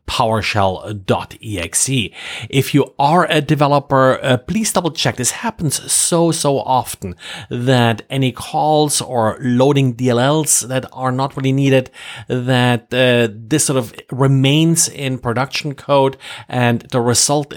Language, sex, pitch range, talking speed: English, male, 125-155 Hz, 130 wpm